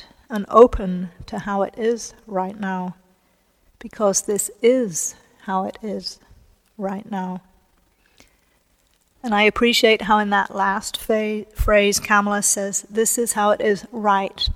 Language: English